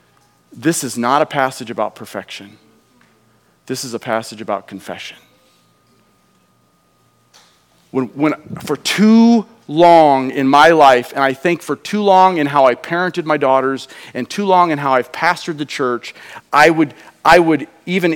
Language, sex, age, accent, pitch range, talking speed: English, male, 40-59, American, 145-215 Hz, 155 wpm